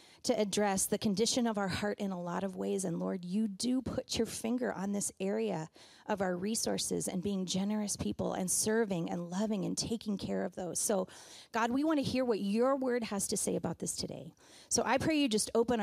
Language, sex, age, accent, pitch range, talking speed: English, female, 30-49, American, 190-275 Hz, 225 wpm